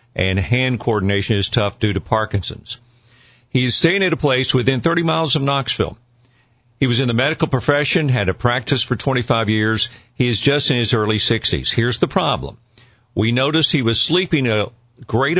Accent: American